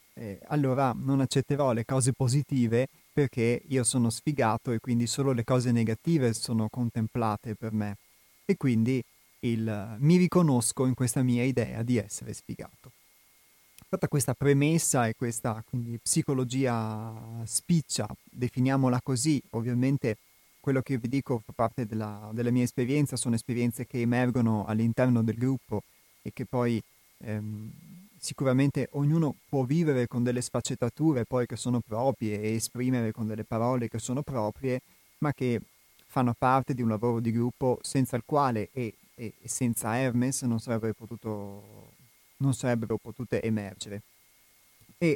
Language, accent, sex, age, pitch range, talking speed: Italian, native, male, 30-49, 115-135 Hz, 140 wpm